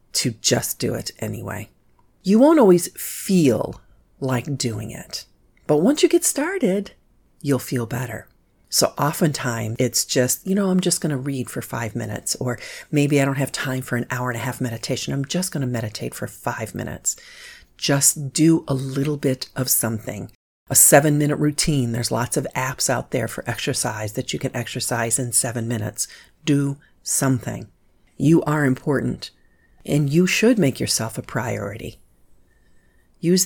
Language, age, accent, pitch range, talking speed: English, 50-69, American, 125-165 Hz, 170 wpm